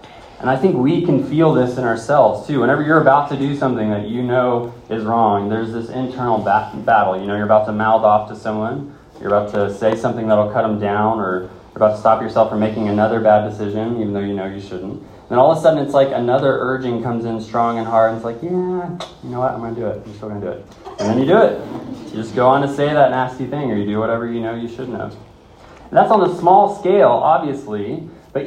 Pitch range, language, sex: 110-145 Hz, English, male